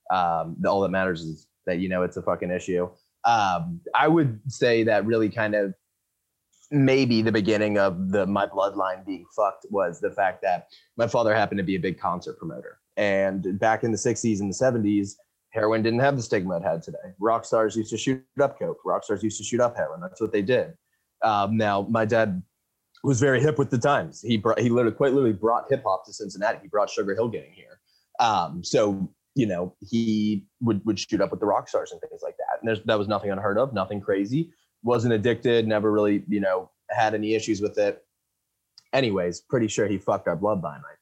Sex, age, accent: male, 20-39, American